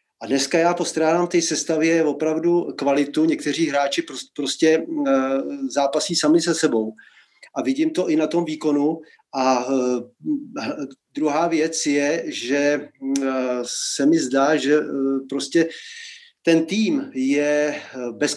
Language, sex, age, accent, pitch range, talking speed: Czech, male, 40-59, native, 140-170 Hz, 120 wpm